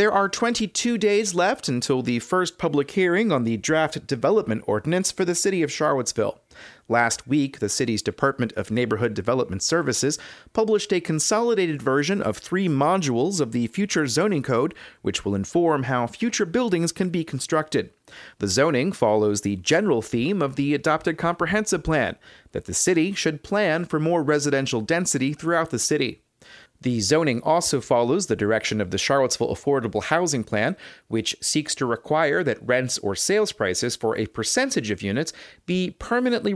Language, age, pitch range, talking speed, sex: English, 30-49, 120-175 Hz, 165 wpm, male